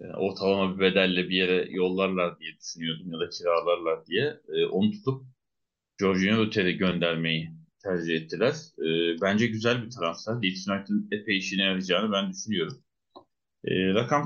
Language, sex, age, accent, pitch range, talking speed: Turkish, male, 30-49, native, 95-120 Hz, 125 wpm